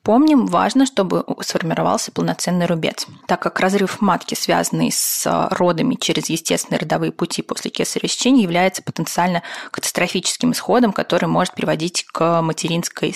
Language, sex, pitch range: Russian, female, 170-220 Hz